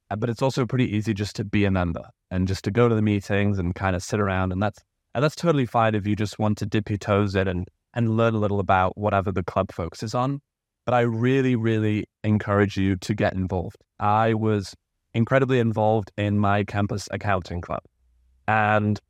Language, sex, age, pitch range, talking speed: English, male, 20-39, 95-110 Hz, 210 wpm